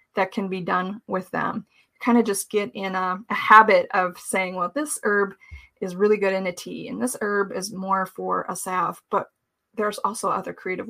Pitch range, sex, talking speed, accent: 190-230 Hz, female, 210 wpm, American